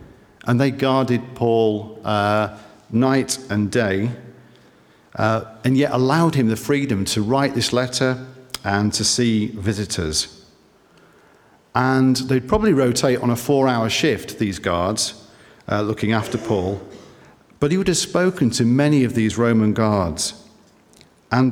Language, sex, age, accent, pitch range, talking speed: English, male, 50-69, British, 105-130 Hz, 140 wpm